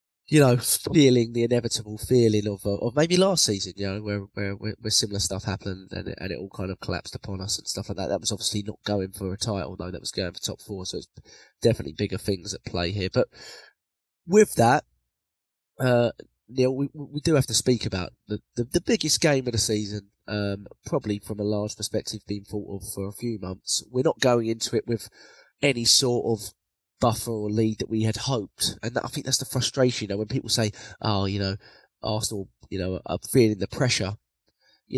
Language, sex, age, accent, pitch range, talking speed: English, male, 20-39, British, 100-125 Hz, 220 wpm